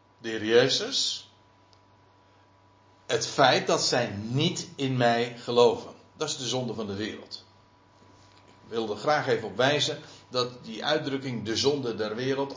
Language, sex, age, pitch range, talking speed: Dutch, male, 60-79, 100-140 Hz, 145 wpm